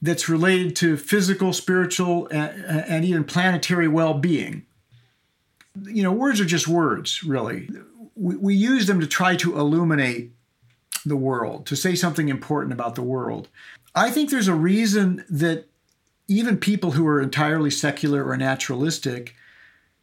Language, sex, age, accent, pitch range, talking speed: English, male, 50-69, American, 145-185 Hz, 140 wpm